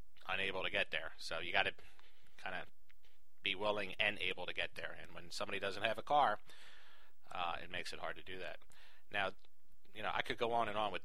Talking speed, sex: 230 wpm, male